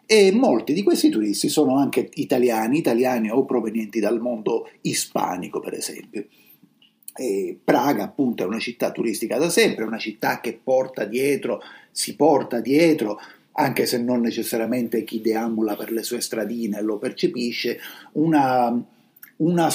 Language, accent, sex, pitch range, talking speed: Italian, native, male, 110-145 Hz, 145 wpm